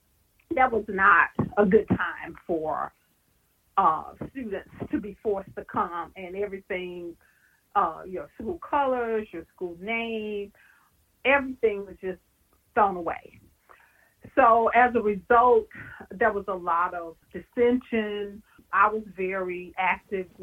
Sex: female